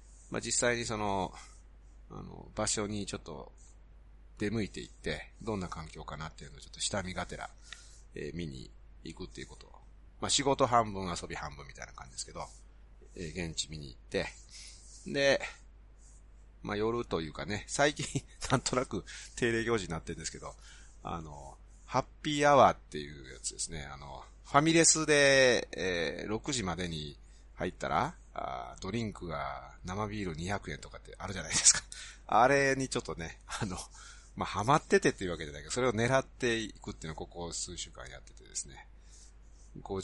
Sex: male